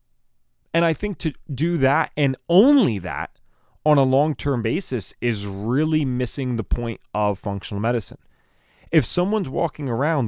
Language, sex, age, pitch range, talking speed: English, male, 30-49, 95-125 Hz, 145 wpm